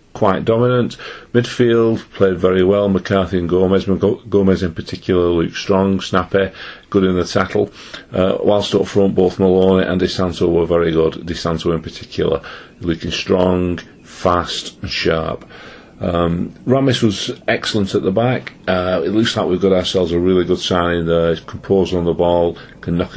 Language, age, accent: English, 40-59, British